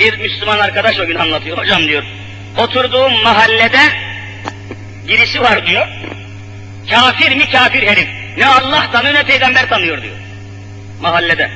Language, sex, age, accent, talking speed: Turkish, male, 50-69, native, 130 wpm